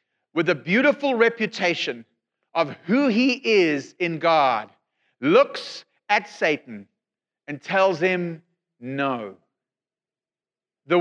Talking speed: 100 wpm